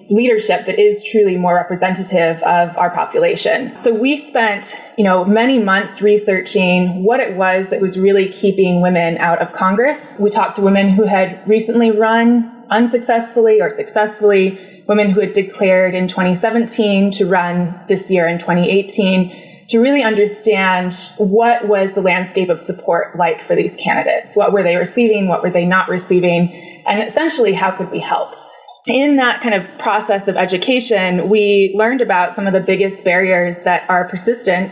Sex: female